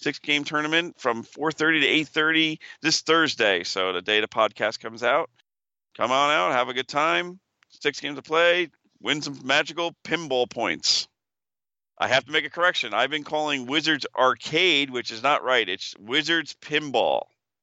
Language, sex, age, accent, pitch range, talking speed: English, male, 40-59, American, 115-145 Hz, 165 wpm